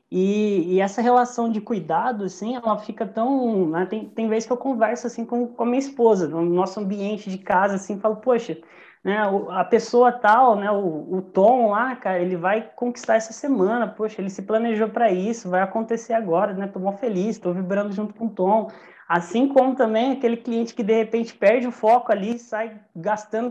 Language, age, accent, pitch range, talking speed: Portuguese, 20-39, Brazilian, 200-245 Hz, 200 wpm